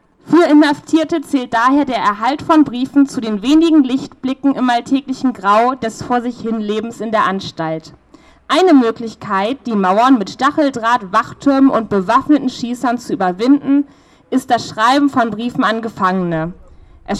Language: German